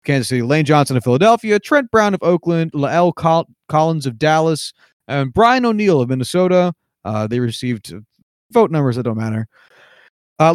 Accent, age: American, 20-39